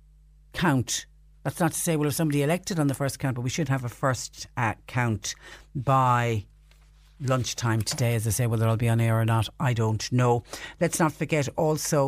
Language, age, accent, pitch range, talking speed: English, 60-79, Irish, 125-155 Hz, 205 wpm